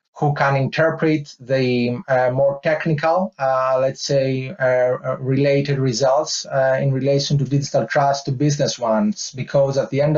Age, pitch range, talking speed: 30-49, 135-150 Hz, 155 wpm